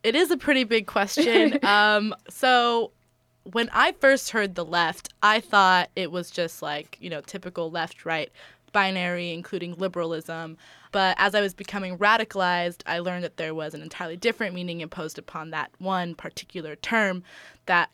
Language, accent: English, American